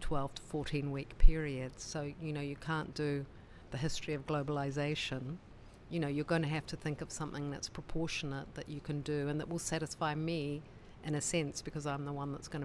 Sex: female